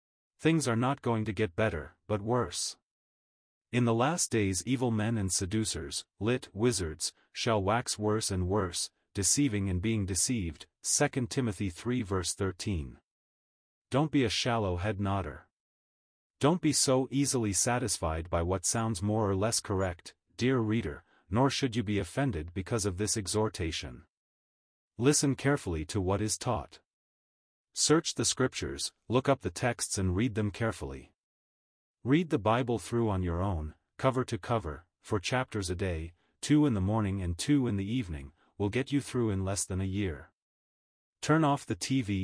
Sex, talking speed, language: male, 165 wpm, English